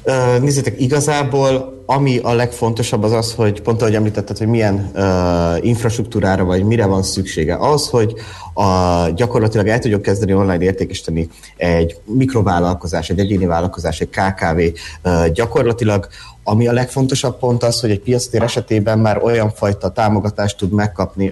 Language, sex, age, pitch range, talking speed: Hungarian, male, 30-49, 95-115 Hz, 145 wpm